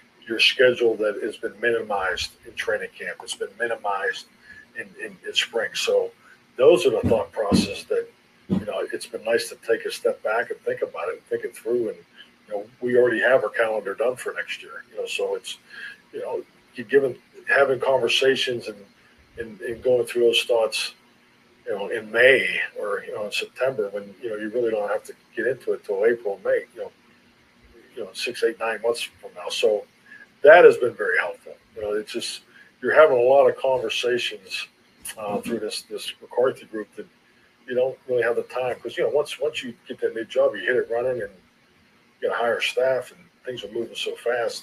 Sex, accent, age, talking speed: male, American, 50-69, 210 wpm